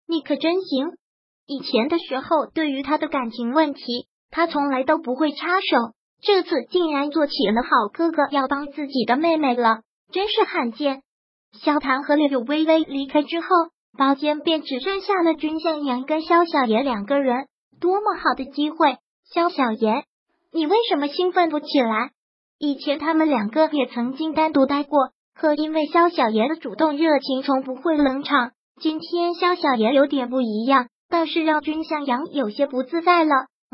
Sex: male